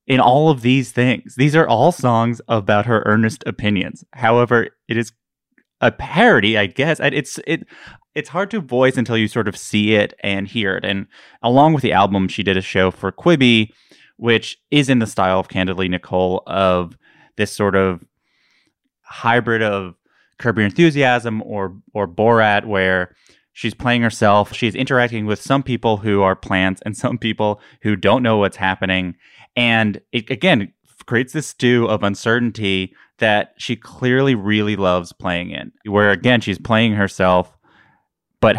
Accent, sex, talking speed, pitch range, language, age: American, male, 165 wpm, 100-125 Hz, English, 20-39